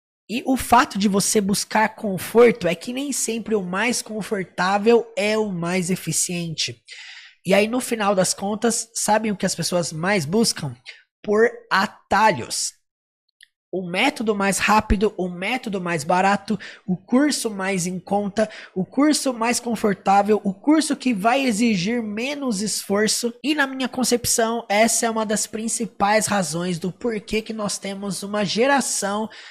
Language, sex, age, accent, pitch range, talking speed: Portuguese, male, 20-39, Brazilian, 190-235 Hz, 150 wpm